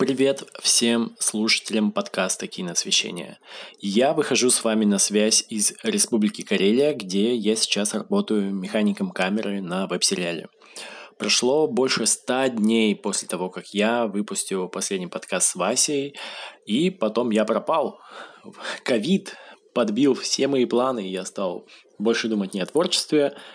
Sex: male